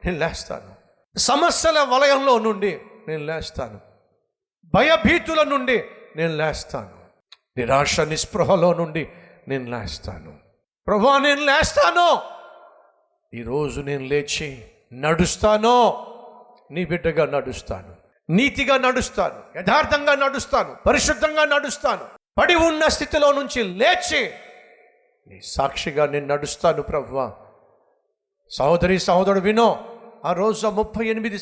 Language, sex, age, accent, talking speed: Telugu, male, 50-69, native, 95 wpm